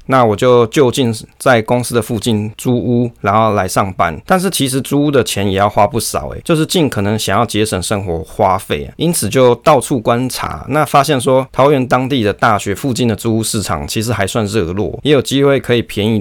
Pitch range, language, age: 105-140 Hz, Chinese, 20-39